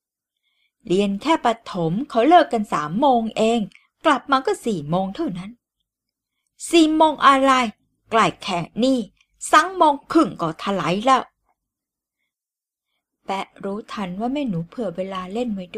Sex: female